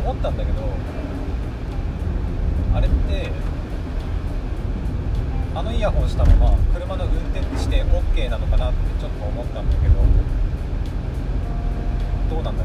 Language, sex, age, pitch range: Japanese, male, 30-49, 75-90 Hz